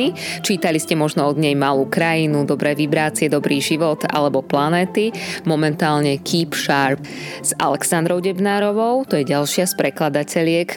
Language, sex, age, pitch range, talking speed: Slovak, female, 20-39, 145-185 Hz, 135 wpm